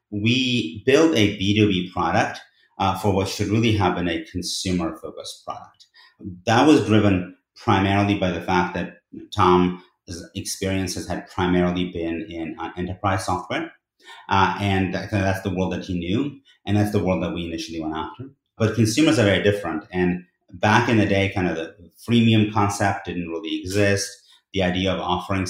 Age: 30-49